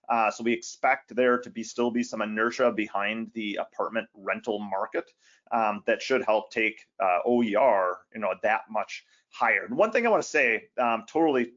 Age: 30-49